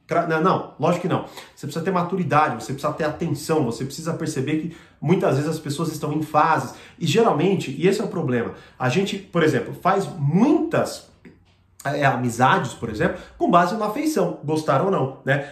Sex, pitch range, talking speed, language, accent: male, 150-210 Hz, 180 wpm, Portuguese, Brazilian